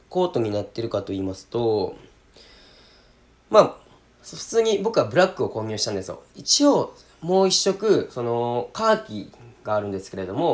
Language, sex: Japanese, male